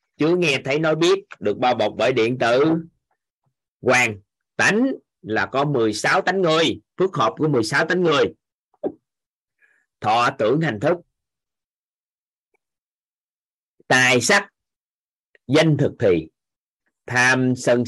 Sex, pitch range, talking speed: male, 125-170 Hz, 120 wpm